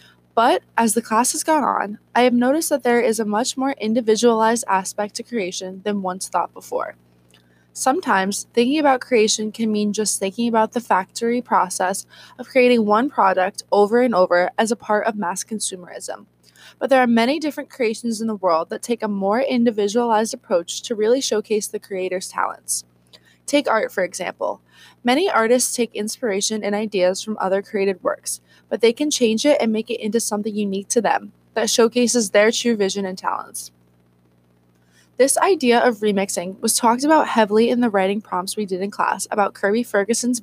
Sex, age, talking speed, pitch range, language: female, 20-39, 185 wpm, 185-240 Hz, English